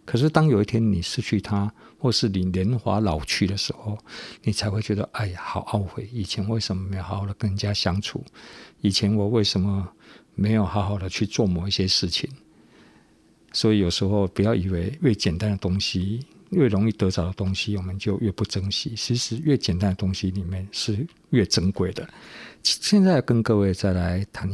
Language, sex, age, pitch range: Chinese, male, 50-69, 95-120 Hz